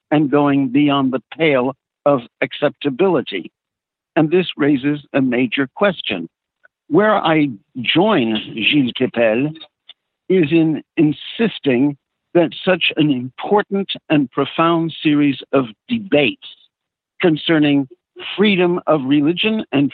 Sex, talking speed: male, 105 wpm